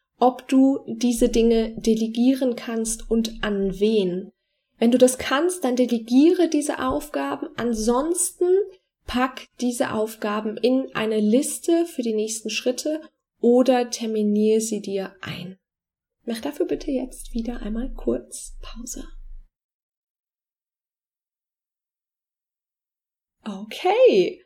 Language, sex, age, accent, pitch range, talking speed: German, female, 20-39, German, 220-265 Hz, 105 wpm